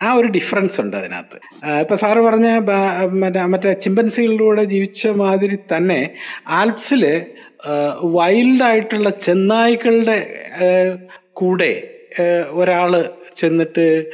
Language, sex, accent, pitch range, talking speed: Malayalam, male, native, 170-235 Hz, 90 wpm